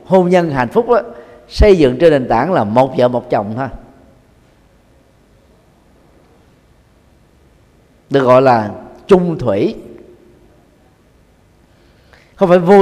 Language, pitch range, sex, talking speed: Vietnamese, 125-195 Hz, male, 110 wpm